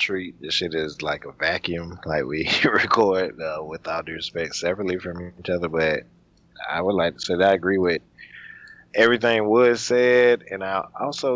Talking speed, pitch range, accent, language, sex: 180 wpm, 75-95 Hz, American, English, male